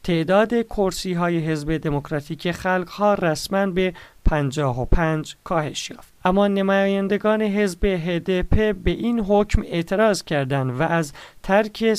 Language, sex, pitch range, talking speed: Persian, male, 155-200 Hz, 120 wpm